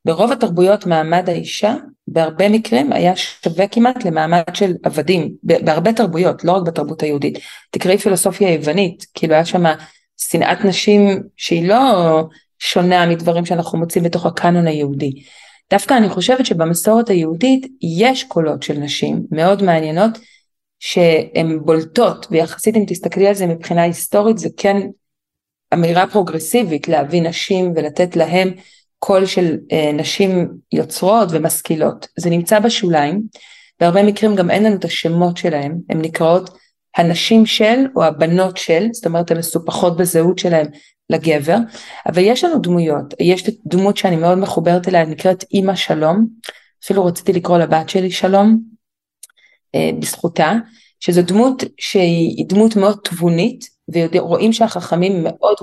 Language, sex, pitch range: Hebrew, female, 165-205 Hz